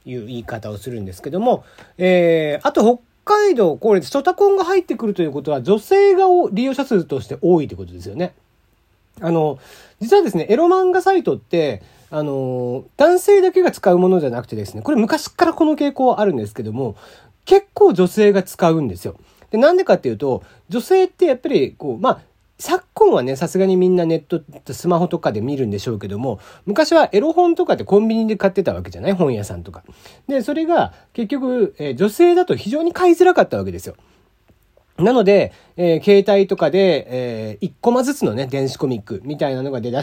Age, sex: 40-59, male